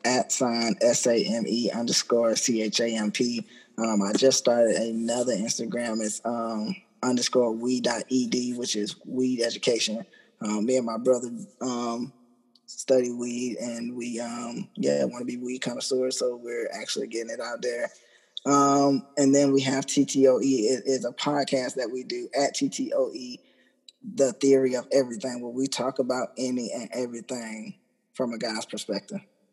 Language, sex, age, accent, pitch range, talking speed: English, male, 20-39, American, 115-140 Hz, 150 wpm